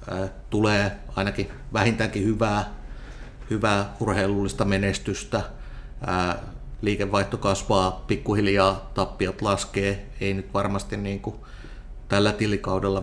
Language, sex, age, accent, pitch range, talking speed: Finnish, male, 30-49, native, 95-105 Hz, 90 wpm